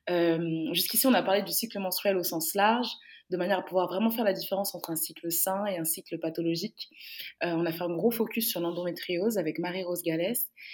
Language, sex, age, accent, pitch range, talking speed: French, female, 20-39, French, 170-210 Hz, 220 wpm